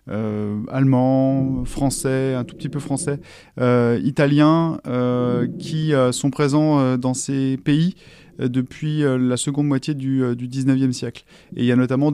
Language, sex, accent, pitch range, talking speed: French, male, French, 125-150 Hz, 175 wpm